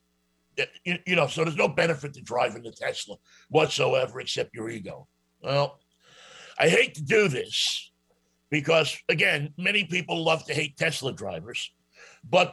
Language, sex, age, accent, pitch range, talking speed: English, male, 60-79, American, 105-175 Hz, 145 wpm